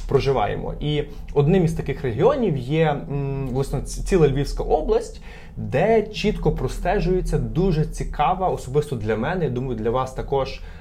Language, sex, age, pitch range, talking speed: Ukrainian, male, 20-39, 125-165 Hz, 135 wpm